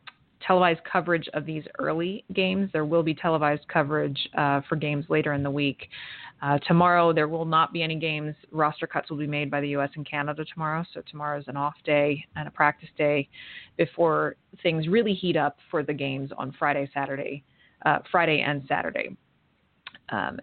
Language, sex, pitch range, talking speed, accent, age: English, female, 145-170 Hz, 185 wpm, American, 30-49